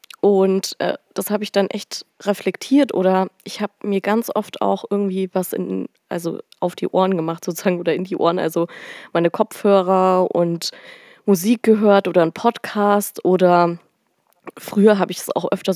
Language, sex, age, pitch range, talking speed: German, female, 20-39, 185-220 Hz, 160 wpm